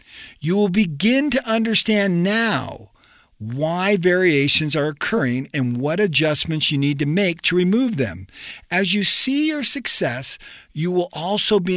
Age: 50-69